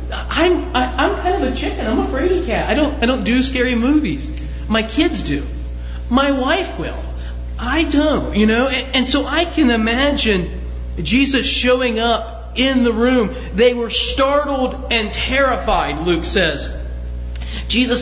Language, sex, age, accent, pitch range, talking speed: English, male, 30-49, American, 195-285 Hz, 155 wpm